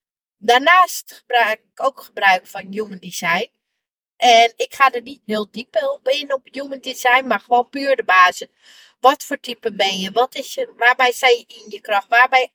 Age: 30-49